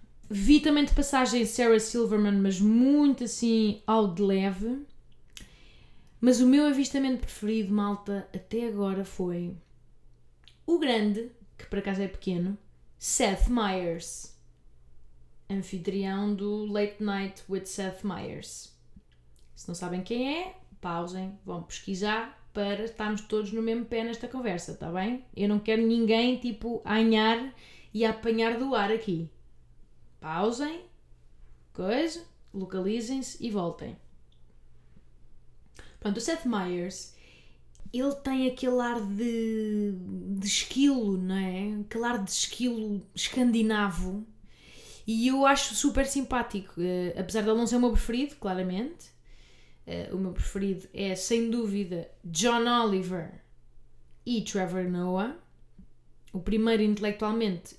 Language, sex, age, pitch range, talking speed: Portuguese, female, 20-39, 180-235 Hz, 120 wpm